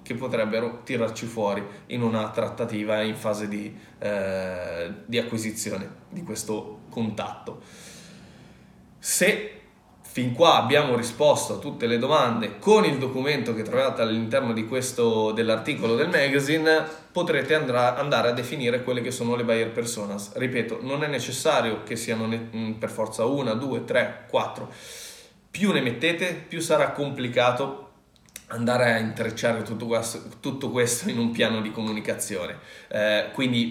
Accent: native